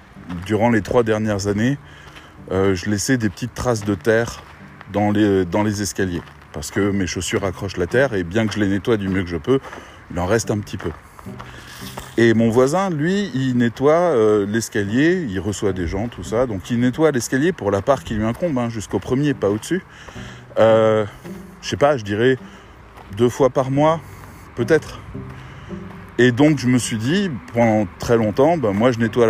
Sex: male